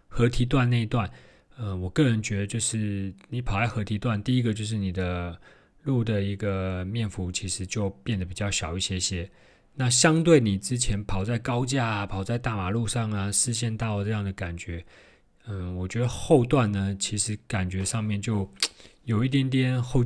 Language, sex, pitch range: Chinese, male, 95-120 Hz